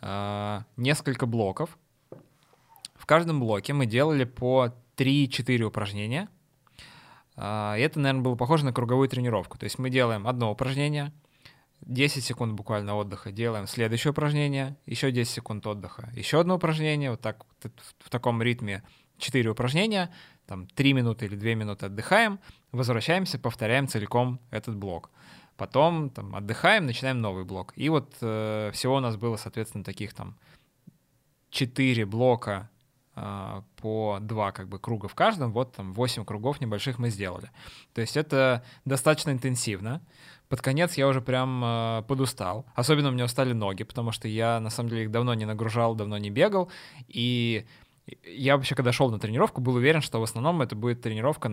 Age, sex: 20-39, male